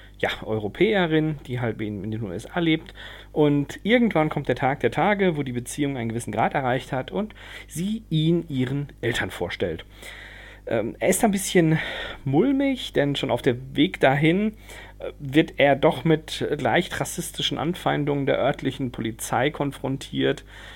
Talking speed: 150 wpm